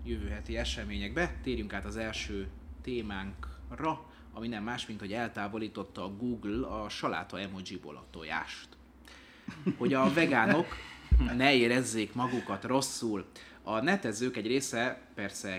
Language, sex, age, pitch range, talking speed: Hungarian, male, 30-49, 90-115 Hz, 125 wpm